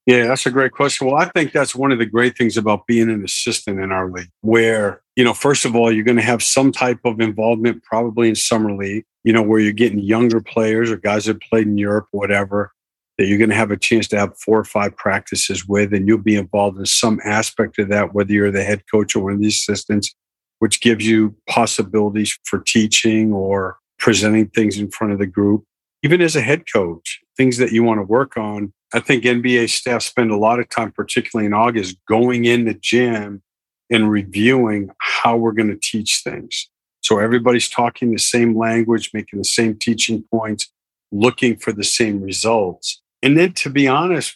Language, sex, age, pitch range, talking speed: English, male, 50-69, 105-120 Hz, 210 wpm